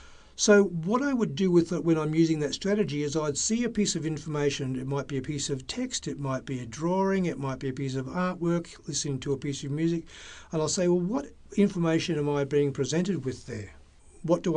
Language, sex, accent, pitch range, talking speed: English, male, Australian, 140-175 Hz, 240 wpm